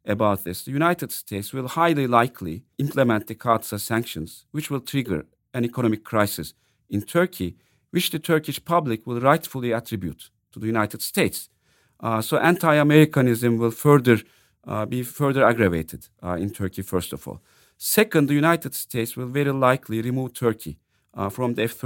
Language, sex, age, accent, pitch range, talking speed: English, male, 50-69, Turkish, 110-145 Hz, 160 wpm